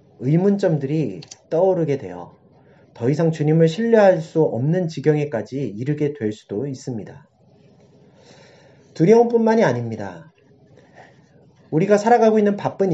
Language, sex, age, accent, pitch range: Korean, male, 30-49, native, 130-180 Hz